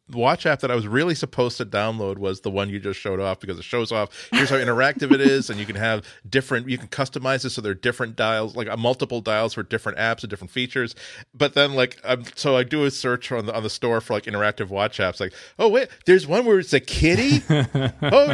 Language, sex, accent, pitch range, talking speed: English, male, American, 110-175 Hz, 255 wpm